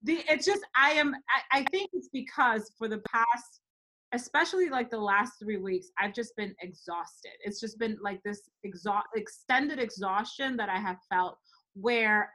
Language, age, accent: English, 30-49, American